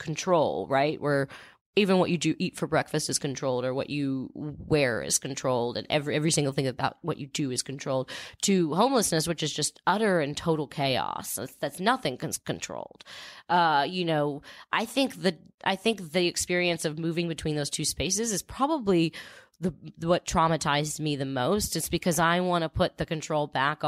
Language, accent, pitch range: English, American, 145-175 Hz